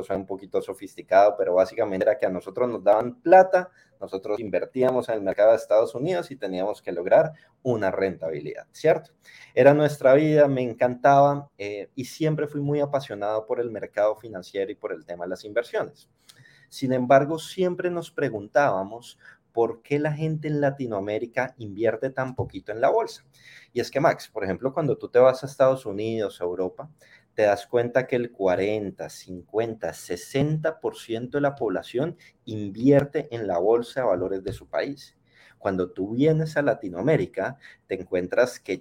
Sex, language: male, Spanish